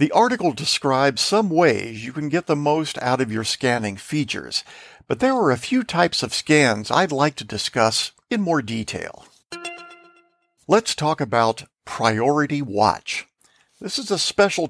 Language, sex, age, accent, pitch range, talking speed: English, male, 50-69, American, 125-180 Hz, 160 wpm